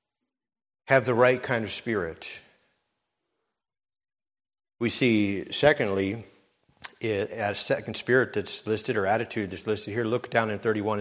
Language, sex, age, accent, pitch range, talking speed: English, male, 50-69, American, 110-145 Hz, 125 wpm